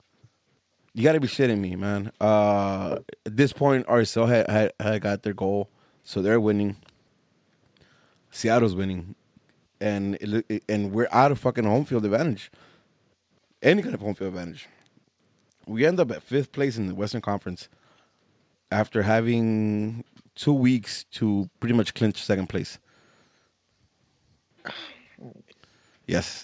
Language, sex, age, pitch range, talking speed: English, male, 20-39, 100-120 Hz, 135 wpm